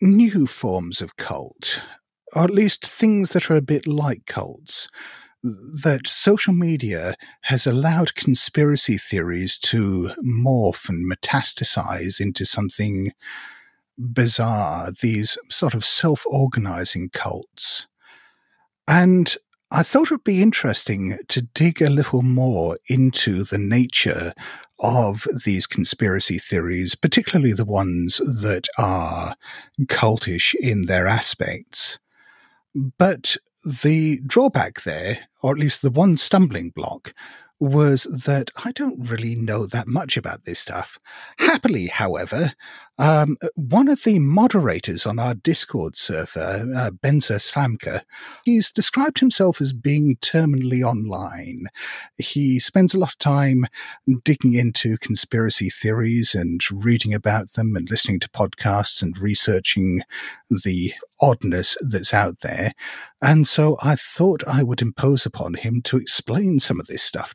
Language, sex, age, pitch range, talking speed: English, male, 50-69, 105-155 Hz, 130 wpm